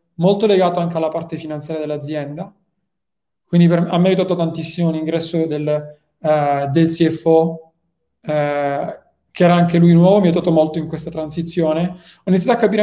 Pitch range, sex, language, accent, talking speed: 160-185 Hz, male, Italian, native, 160 wpm